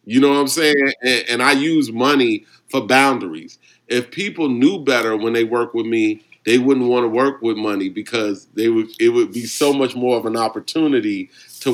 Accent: American